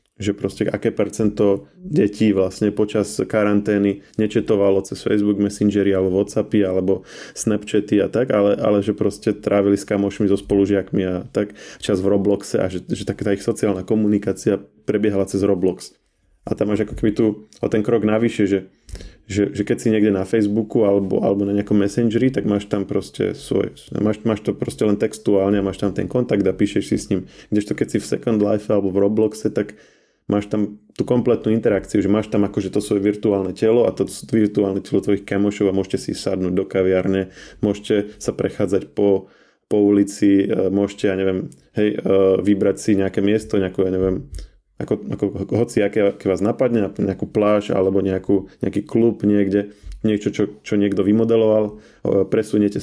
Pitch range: 95-105 Hz